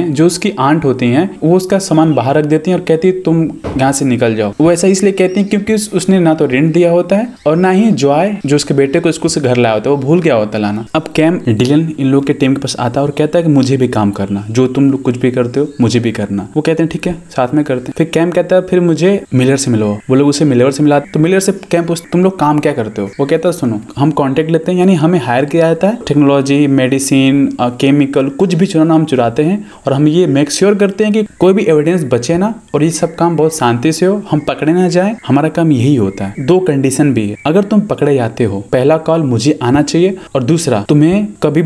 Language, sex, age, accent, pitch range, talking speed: Hindi, male, 20-39, native, 130-170 Hz, 125 wpm